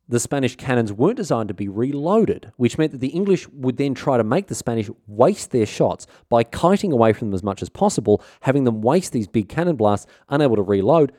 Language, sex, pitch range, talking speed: English, male, 105-145 Hz, 225 wpm